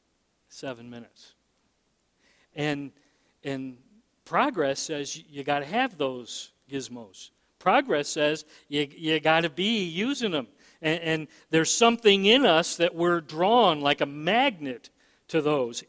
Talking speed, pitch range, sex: 135 wpm, 155-220 Hz, male